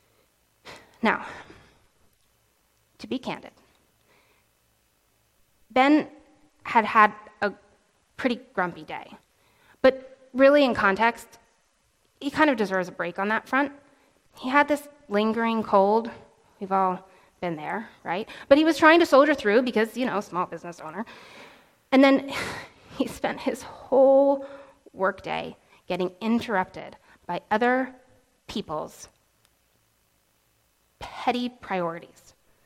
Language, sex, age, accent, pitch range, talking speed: English, female, 20-39, American, 195-265 Hz, 110 wpm